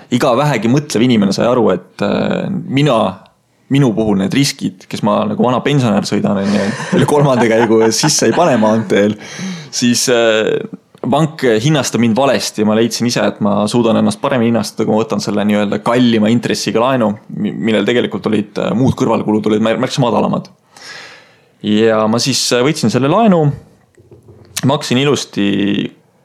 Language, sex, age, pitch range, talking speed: English, male, 20-39, 110-135 Hz, 140 wpm